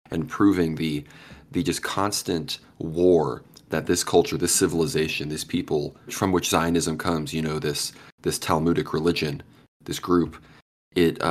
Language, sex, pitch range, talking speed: English, male, 75-85 Hz, 135 wpm